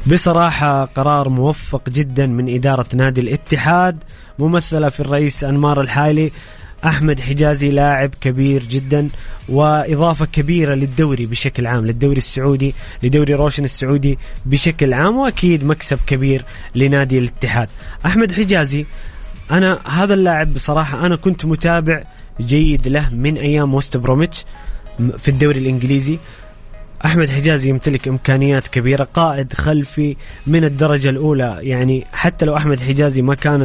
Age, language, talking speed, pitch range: 20-39, English, 125 wpm, 130-155 Hz